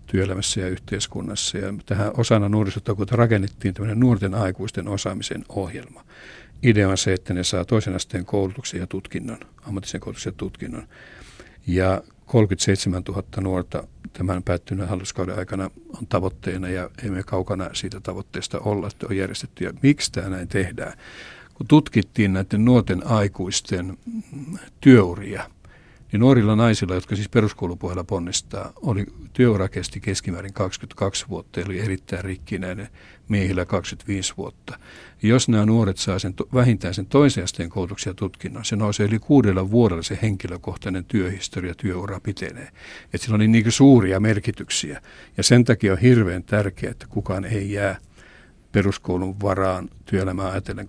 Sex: male